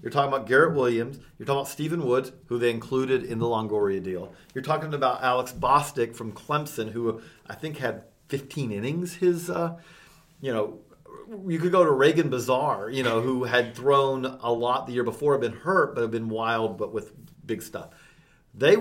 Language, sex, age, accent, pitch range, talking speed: English, male, 40-59, American, 115-155 Hz, 200 wpm